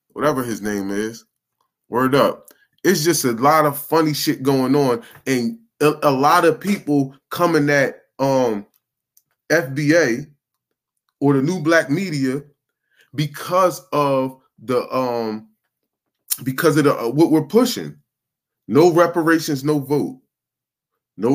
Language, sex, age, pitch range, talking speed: English, male, 20-39, 135-175 Hz, 120 wpm